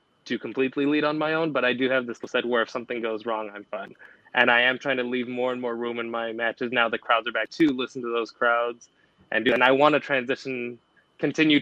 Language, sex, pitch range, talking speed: English, male, 120-135 Hz, 260 wpm